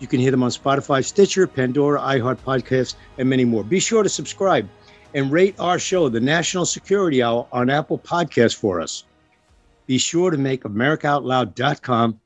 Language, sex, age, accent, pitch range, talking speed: English, male, 50-69, American, 120-155 Hz, 170 wpm